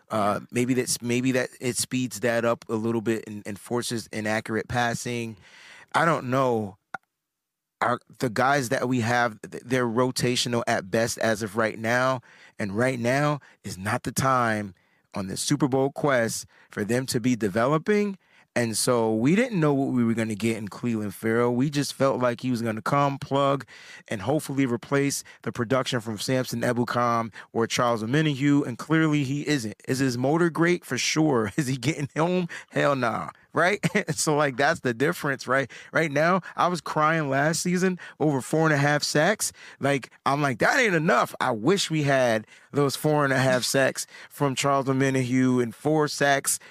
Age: 30-49